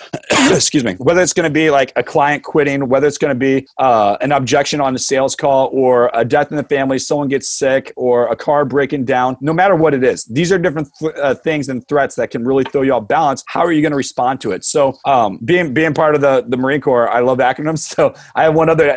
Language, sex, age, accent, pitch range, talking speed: English, male, 30-49, American, 135-160 Hz, 265 wpm